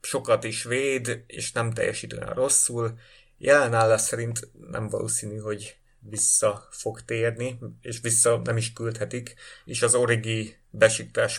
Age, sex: 30-49, male